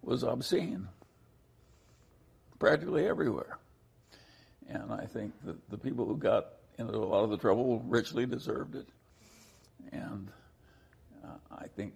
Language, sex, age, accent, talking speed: English, male, 60-79, American, 125 wpm